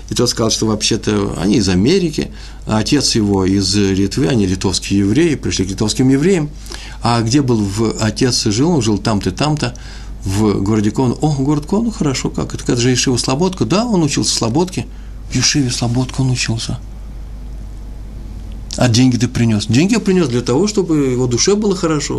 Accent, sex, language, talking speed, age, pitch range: native, male, Russian, 180 wpm, 50-69, 110-150 Hz